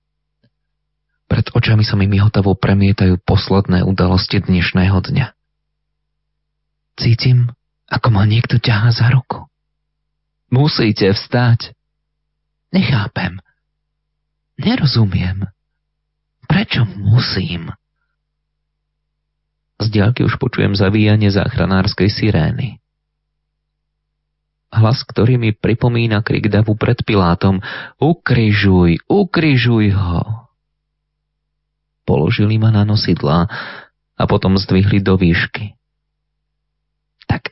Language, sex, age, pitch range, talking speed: Slovak, male, 30-49, 100-150 Hz, 80 wpm